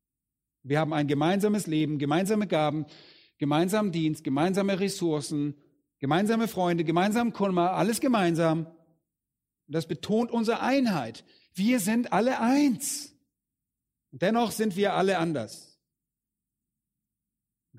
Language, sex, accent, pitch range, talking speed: German, male, German, 135-190 Hz, 110 wpm